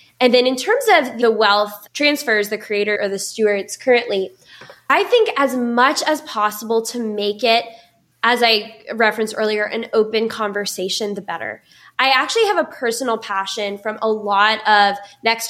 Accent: American